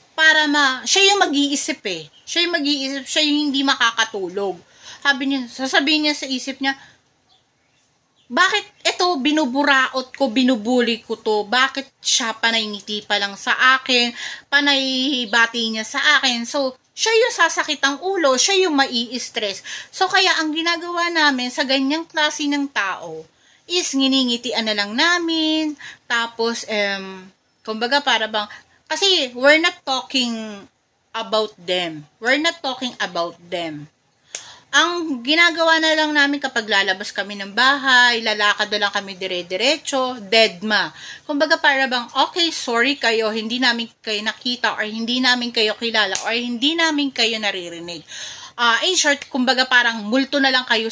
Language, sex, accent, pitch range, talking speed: Filipino, female, native, 220-295 Hz, 145 wpm